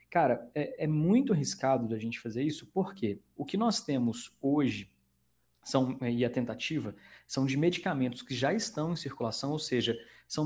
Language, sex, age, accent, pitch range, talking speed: Portuguese, male, 20-39, Brazilian, 120-160 Hz, 170 wpm